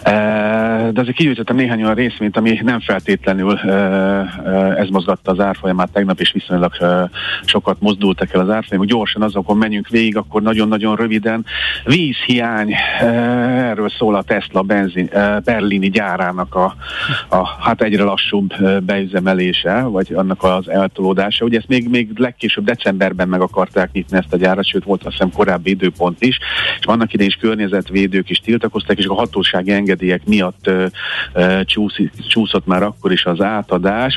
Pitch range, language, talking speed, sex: 95-110 Hz, Hungarian, 150 wpm, male